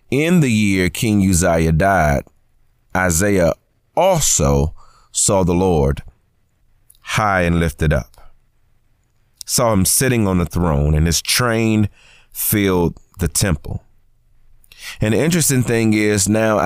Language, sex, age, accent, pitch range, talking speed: English, male, 30-49, American, 85-110 Hz, 120 wpm